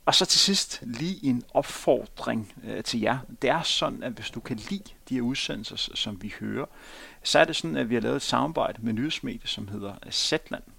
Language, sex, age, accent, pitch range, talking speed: Danish, male, 30-49, native, 120-145 Hz, 215 wpm